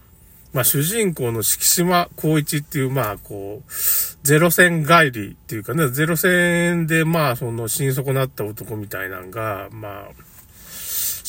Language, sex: Japanese, male